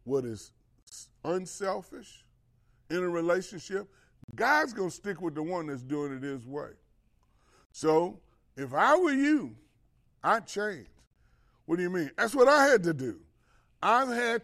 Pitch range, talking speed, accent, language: 120-185 Hz, 155 wpm, American, English